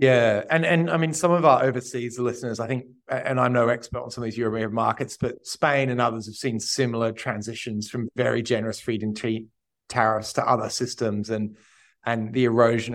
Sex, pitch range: male, 115-135 Hz